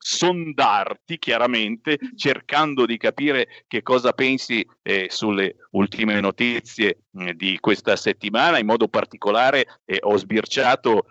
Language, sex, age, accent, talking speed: Italian, male, 50-69, native, 120 wpm